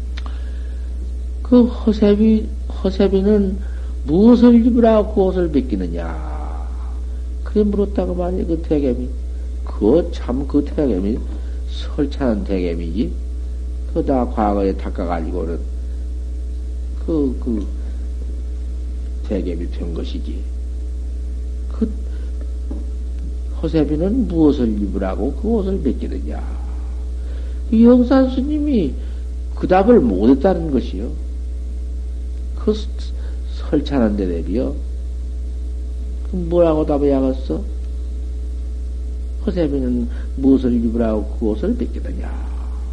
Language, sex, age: Korean, male, 60-79